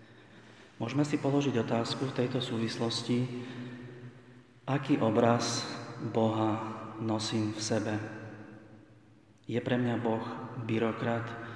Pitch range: 110-120 Hz